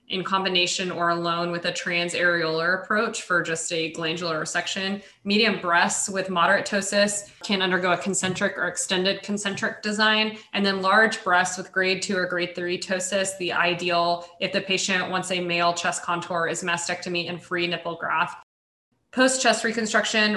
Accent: American